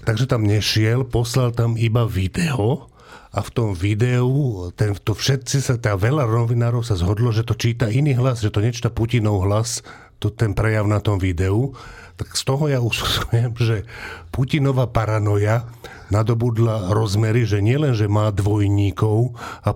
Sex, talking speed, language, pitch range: male, 155 wpm, English, 105-120 Hz